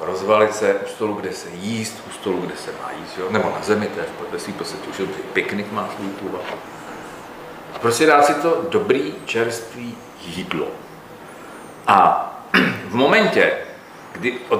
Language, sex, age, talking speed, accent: Czech, male, 40-59, 155 wpm, native